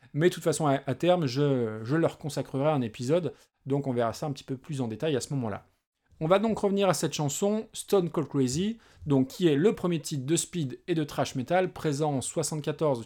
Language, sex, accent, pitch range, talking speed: French, male, French, 135-175 Hz, 230 wpm